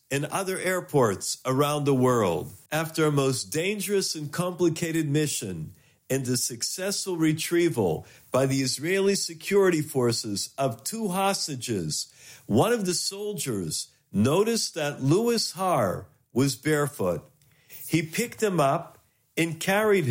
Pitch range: 135-180 Hz